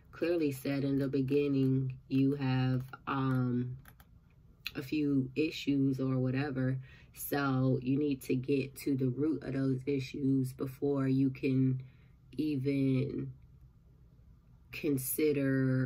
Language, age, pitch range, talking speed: English, 20-39, 130-145 Hz, 110 wpm